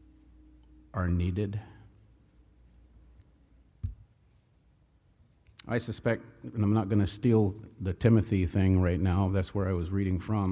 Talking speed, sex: 120 wpm, male